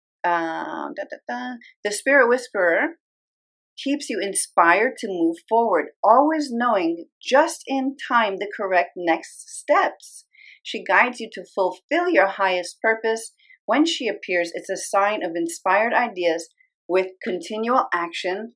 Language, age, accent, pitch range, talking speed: English, 40-59, American, 185-295 Hz, 125 wpm